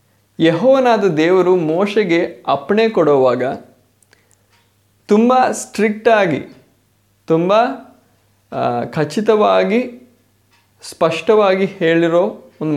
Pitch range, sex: 130-195 Hz, male